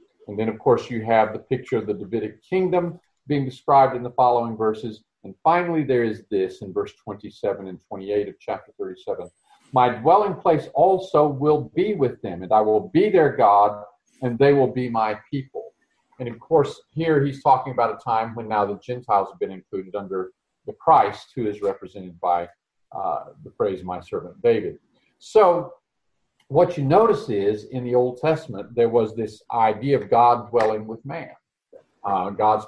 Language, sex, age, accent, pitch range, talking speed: English, male, 50-69, American, 110-160 Hz, 185 wpm